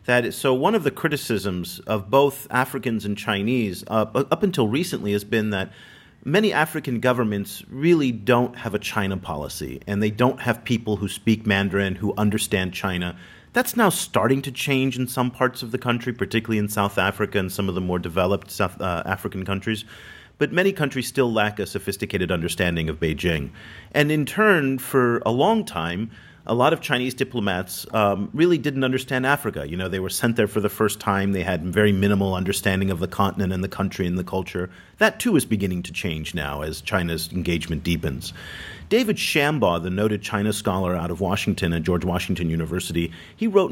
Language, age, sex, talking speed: English, 40-59, male, 190 wpm